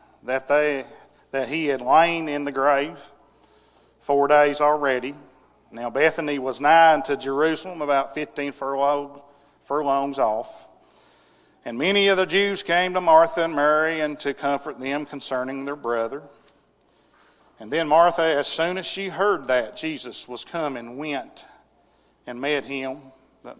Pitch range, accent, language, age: 140-180 Hz, American, English, 40-59